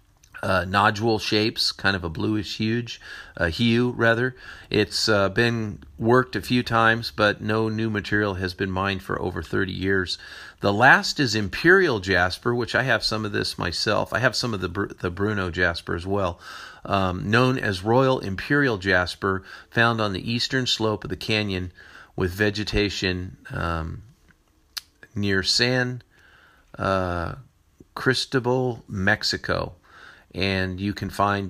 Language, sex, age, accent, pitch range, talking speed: English, male, 40-59, American, 95-110 Hz, 145 wpm